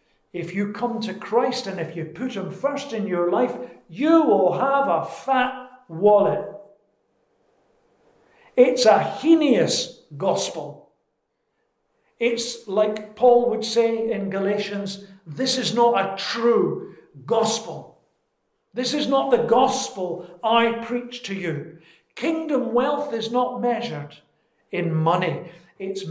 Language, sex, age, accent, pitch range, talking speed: English, male, 50-69, British, 175-250 Hz, 125 wpm